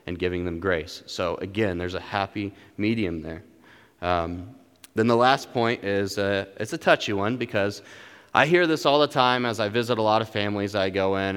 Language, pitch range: English, 100-130 Hz